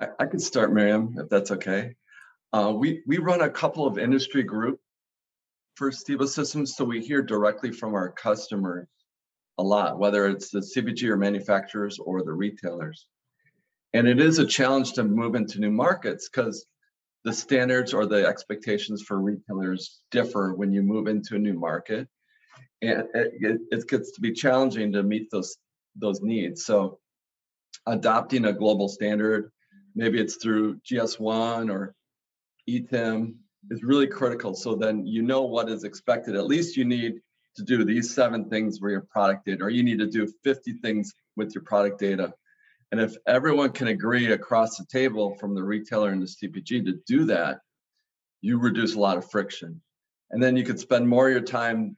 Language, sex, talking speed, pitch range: English, male, 175 wpm, 100-125 Hz